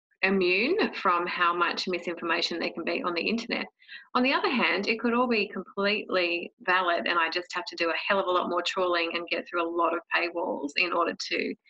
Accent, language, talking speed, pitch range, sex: Australian, English, 225 wpm, 175-200 Hz, female